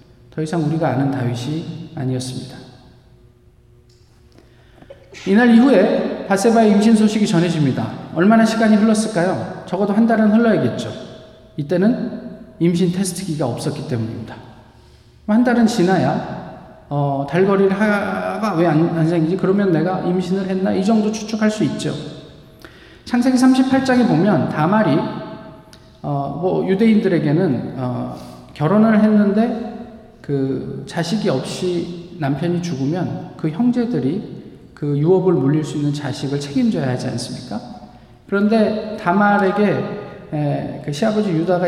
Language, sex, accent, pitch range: Korean, male, native, 145-215 Hz